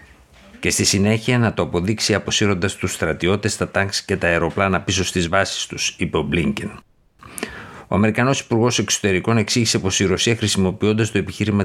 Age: 50-69